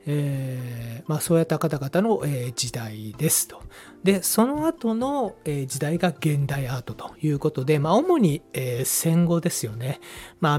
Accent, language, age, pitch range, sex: native, Japanese, 40-59, 130-185 Hz, male